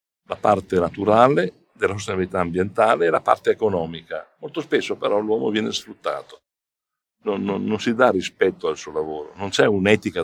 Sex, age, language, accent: male, 60-79, English, Italian